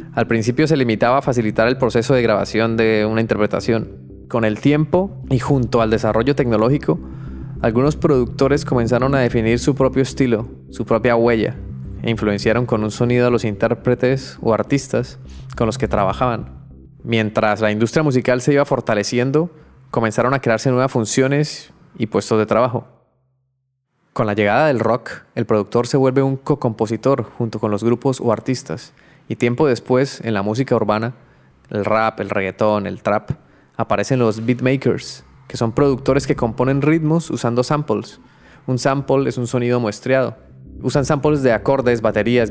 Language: Spanish